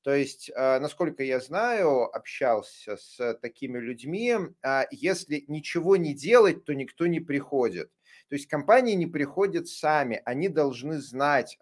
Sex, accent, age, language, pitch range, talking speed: male, native, 30-49, Russian, 125-155 Hz, 135 wpm